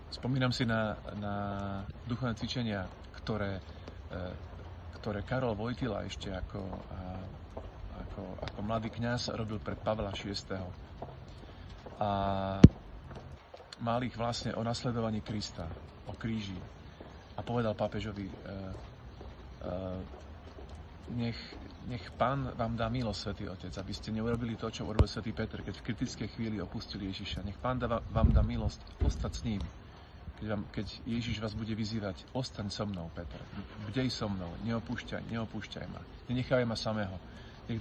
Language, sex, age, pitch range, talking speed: Slovak, male, 40-59, 90-115 Hz, 135 wpm